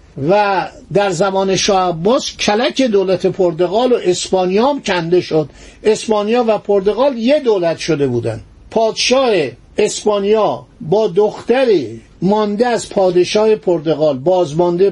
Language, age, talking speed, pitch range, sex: Persian, 50-69, 115 wpm, 170-240 Hz, male